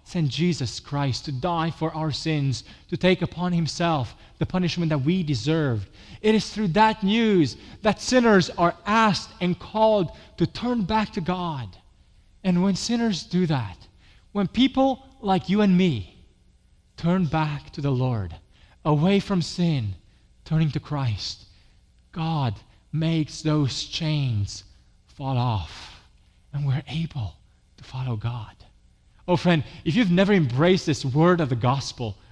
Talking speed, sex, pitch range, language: 145 wpm, male, 125-195 Hz, English